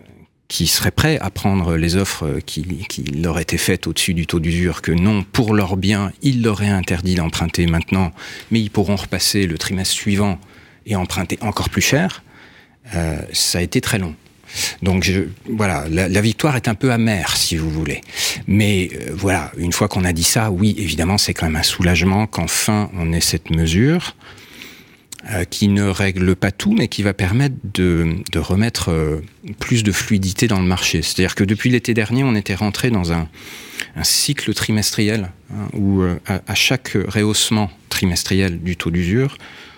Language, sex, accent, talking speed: French, male, French, 180 wpm